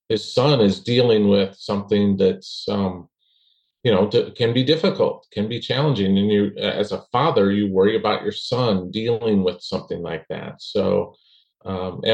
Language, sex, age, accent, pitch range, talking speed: English, male, 40-59, American, 95-155 Hz, 165 wpm